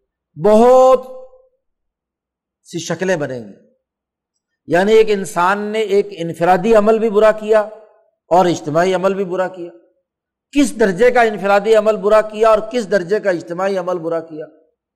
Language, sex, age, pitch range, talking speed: Urdu, male, 50-69, 175-225 Hz, 140 wpm